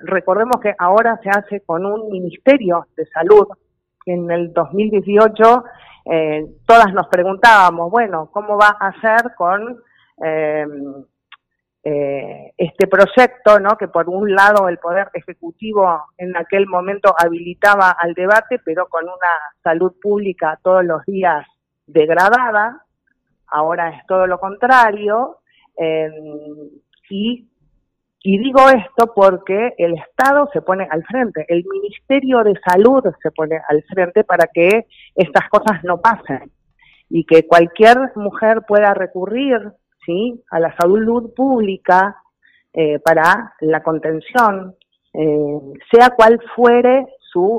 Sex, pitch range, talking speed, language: female, 165-220 Hz, 125 wpm, Spanish